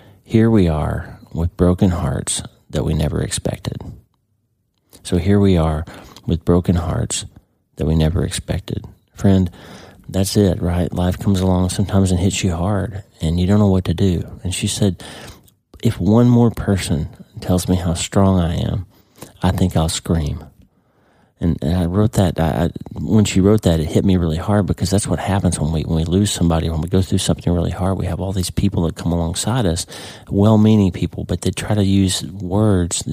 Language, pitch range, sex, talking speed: English, 85-100 Hz, male, 190 wpm